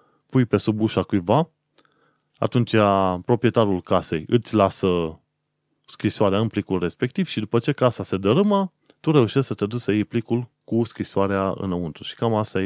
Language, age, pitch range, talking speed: Romanian, 30-49, 95-120 Hz, 160 wpm